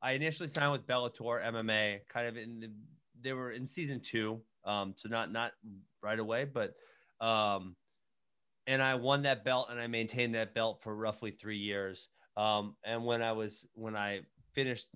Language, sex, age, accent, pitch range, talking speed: English, male, 30-49, American, 100-120 Hz, 180 wpm